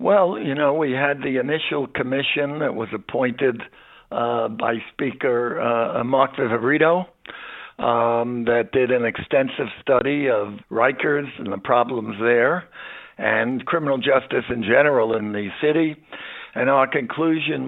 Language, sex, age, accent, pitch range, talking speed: English, male, 60-79, American, 120-140 Hz, 135 wpm